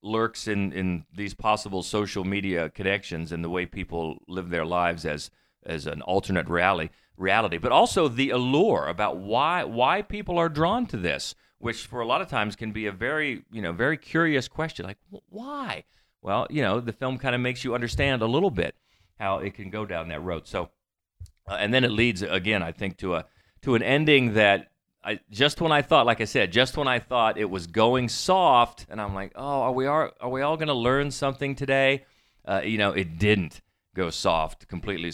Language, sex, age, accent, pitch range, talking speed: English, male, 40-59, American, 95-130 Hz, 215 wpm